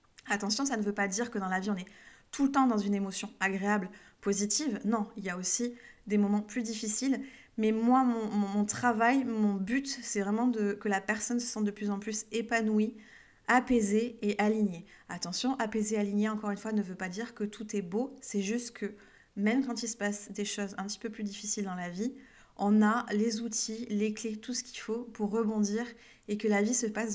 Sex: female